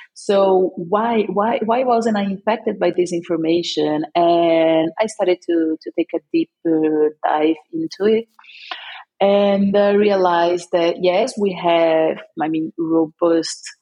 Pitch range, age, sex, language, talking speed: 160-210 Hz, 30-49, female, Hebrew, 145 wpm